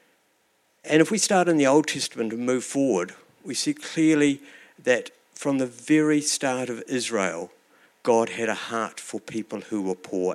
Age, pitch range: 60-79, 105-130 Hz